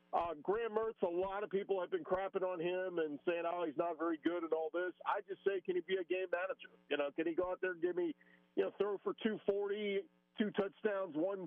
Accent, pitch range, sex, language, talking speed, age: American, 160-230 Hz, male, English, 260 wpm, 50-69